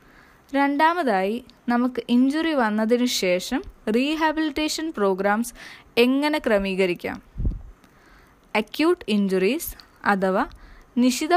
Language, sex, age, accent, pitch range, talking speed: Malayalam, female, 20-39, native, 205-265 Hz, 70 wpm